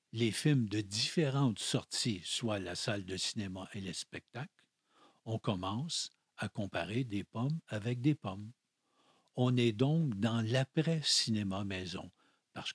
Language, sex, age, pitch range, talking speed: French, male, 50-69, 105-140 Hz, 135 wpm